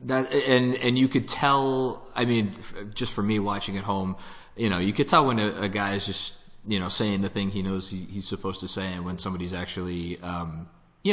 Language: English